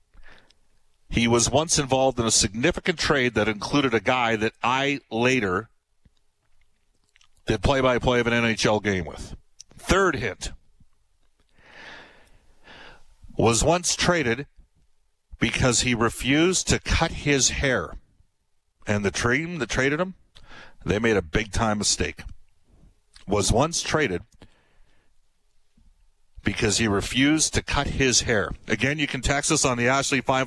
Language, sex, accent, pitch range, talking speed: English, male, American, 115-155 Hz, 125 wpm